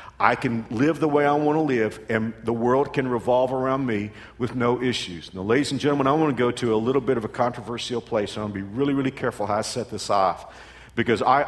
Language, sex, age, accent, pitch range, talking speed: English, male, 50-69, American, 115-155 Hz, 260 wpm